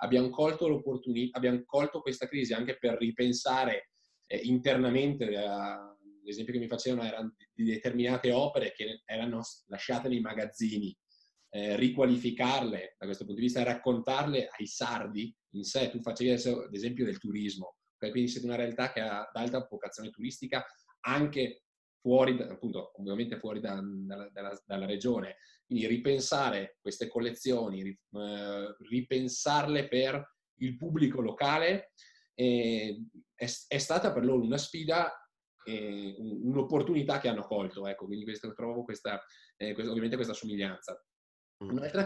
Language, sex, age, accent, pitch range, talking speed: Italian, male, 20-39, native, 105-125 Hz, 140 wpm